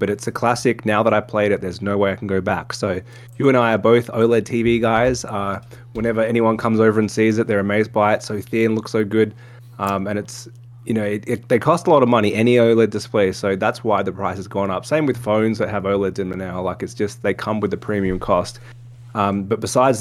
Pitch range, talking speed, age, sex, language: 100-120 Hz, 260 wpm, 20-39, male, English